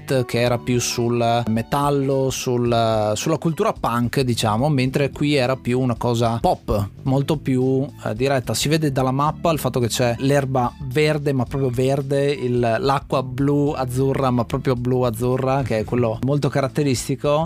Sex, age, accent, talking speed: male, 30-49, native, 155 wpm